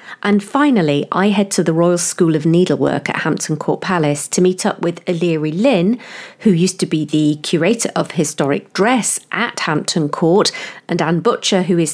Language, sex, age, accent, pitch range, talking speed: English, female, 40-59, British, 160-220 Hz, 185 wpm